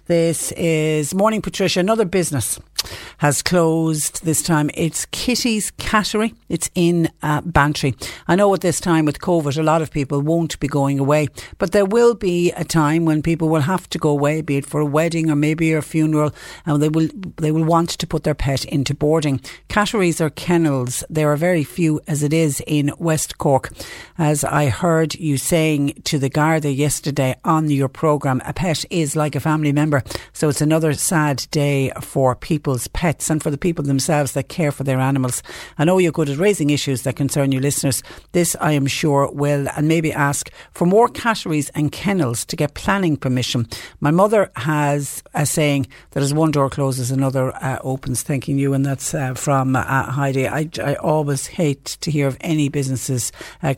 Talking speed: 195 wpm